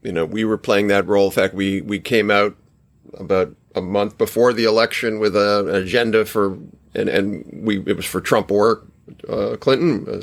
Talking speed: 200 wpm